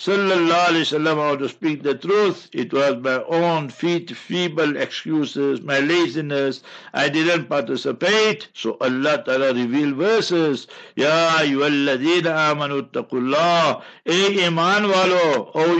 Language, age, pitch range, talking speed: English, 60-79, 140-170 Hz, 110 wpm